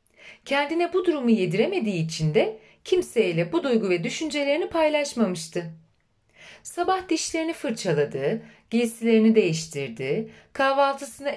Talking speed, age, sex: 95 wpm, 40-59, female